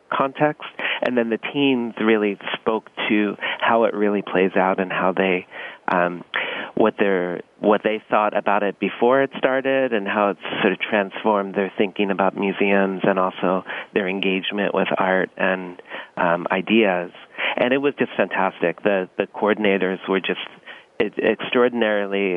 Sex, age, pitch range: male, 30-49, 95-115 Hz